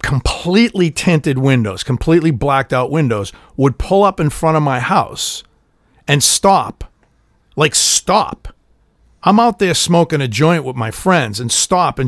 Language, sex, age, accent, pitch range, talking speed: English, male, 50-69, American, 120-165 Hz, 155 wpm